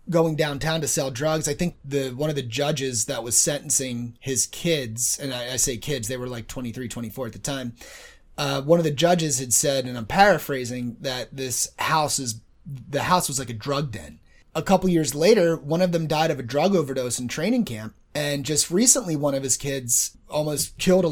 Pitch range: 130-180 Hz